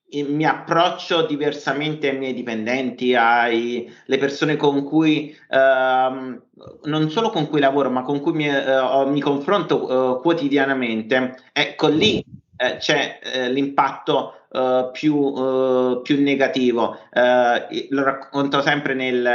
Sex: male